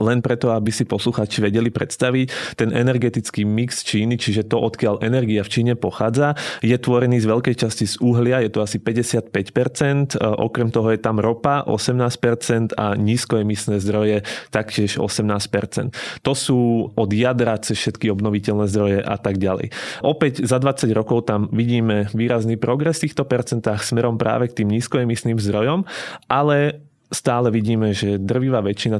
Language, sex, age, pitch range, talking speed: Slovak, male, 20-39, 105-125 Hz, 155 wpm